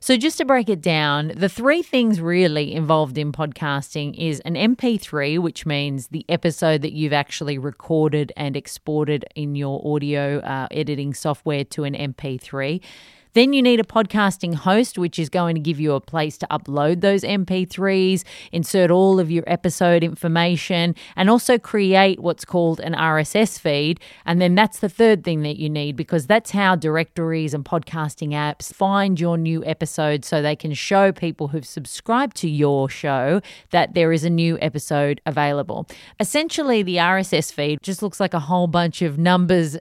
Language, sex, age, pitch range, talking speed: English, female, 30-49, 155-195 Hz, 175 wpm